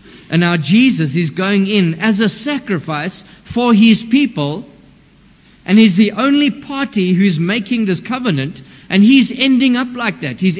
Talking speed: 160 wpm